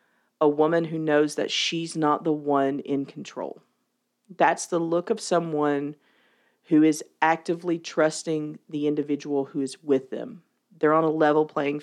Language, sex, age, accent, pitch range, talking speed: English, female, 40-59, American, 150-185 Hz, 155 wpm